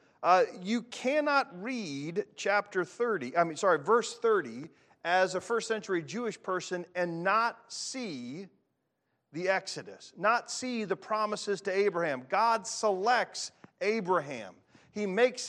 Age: 40-59